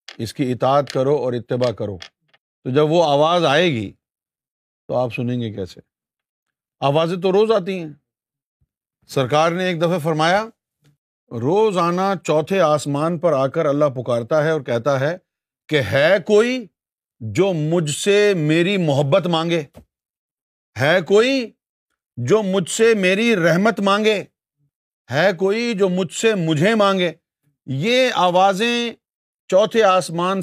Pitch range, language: 145-190 Hz, Urdu